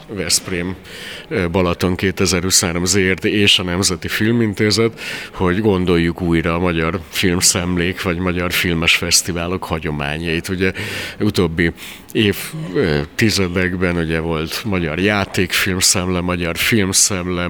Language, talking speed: Hungarian, 95 wpm